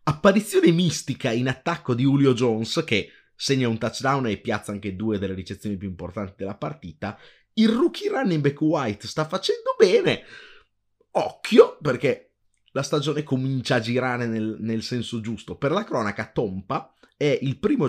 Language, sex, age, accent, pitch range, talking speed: Italian, male, 30-49, native, 100-140 Hz, 160 wpm